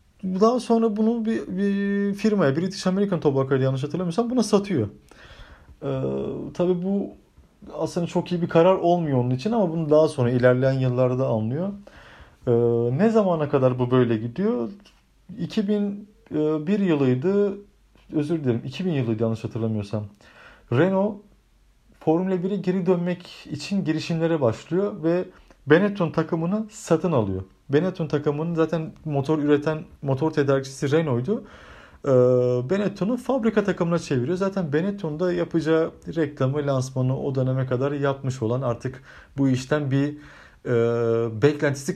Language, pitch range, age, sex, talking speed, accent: Turkish, 130-185 Hz, 40-59, male, 125 wpm, native